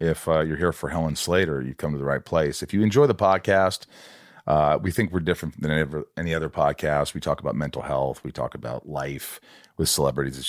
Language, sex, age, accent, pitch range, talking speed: English, male, 40-59, American, 75-100 Hz, 235 wpm